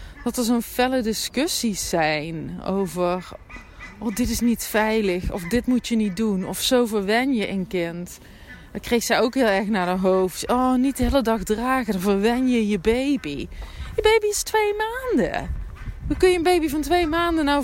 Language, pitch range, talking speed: Dutch, 180-245 Hz, 195 wpm